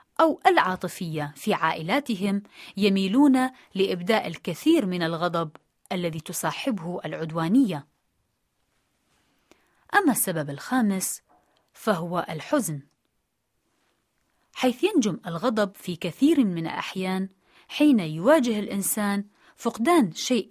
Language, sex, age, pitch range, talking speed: Arabic, female, 30-49, 175-250 Hz, 85 wpm